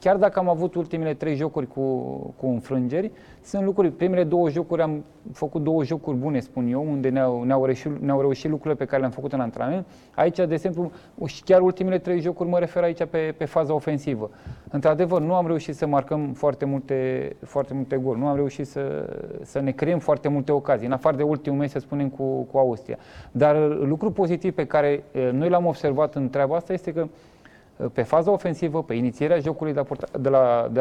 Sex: male